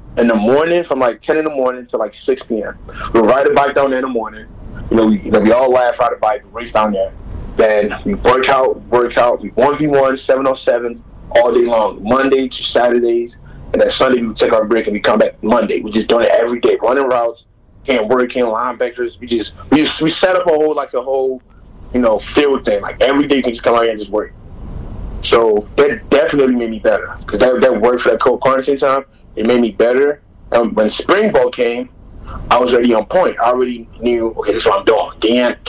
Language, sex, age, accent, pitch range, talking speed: English, male, 20-39, American, 115-145 Hz, 240 wpm